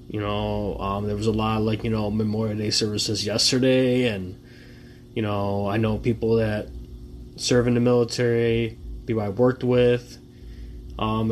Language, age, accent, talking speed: English, 20-39, American, 165 wpm